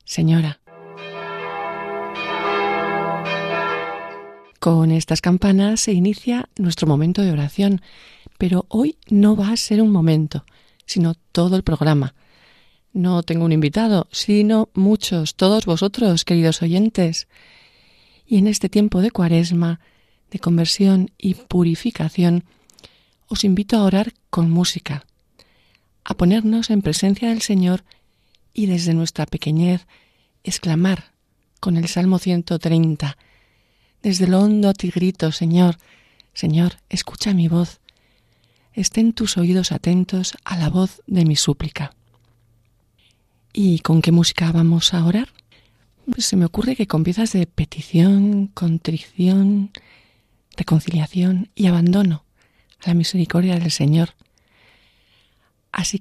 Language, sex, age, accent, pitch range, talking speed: Spanish, female, 40-59, Spanish, 155-195 Hz, 115 wpm